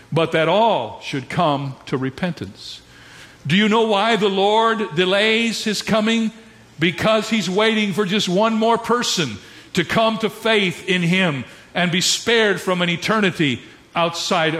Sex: male